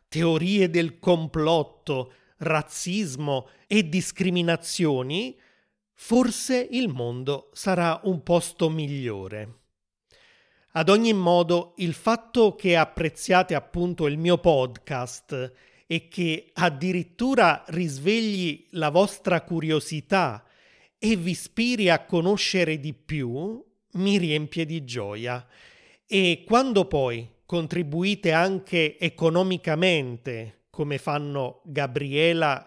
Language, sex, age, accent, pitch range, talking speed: Italian, male, 30-49, native, 145-185 Hz, 95 wpm